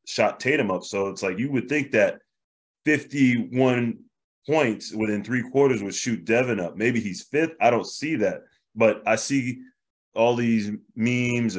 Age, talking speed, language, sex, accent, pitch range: 20-39, 165 wpm, English, male, American, 100-125 Hz